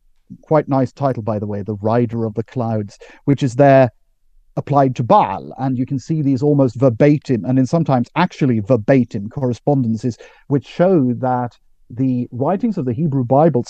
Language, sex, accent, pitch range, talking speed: English, male, British, 125-175 Hz, 170 wpm